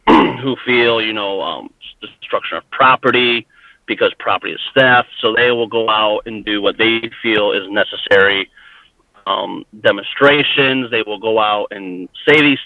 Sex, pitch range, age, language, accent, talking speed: male, 110-140 Hz, 40-59, English, American, 160 wpm